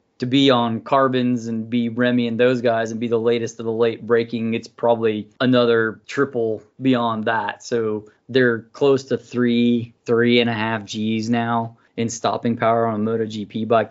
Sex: male